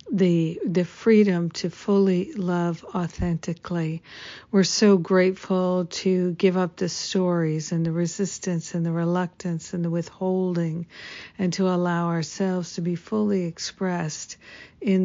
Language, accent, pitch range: English, American, 165-190 Hz